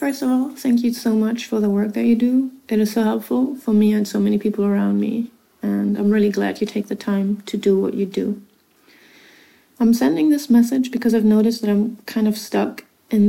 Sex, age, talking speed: female, 30-49, 230 wpm